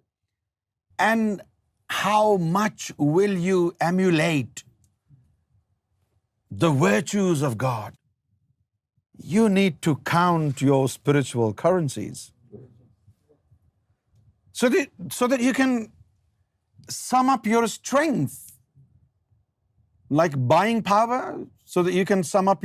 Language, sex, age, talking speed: Urdu, male, 50-69, 95 wpm